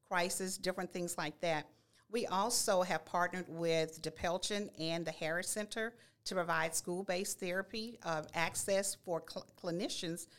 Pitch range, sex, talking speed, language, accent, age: 160-190 Hz, female, 140 wpm, English, American, 50-69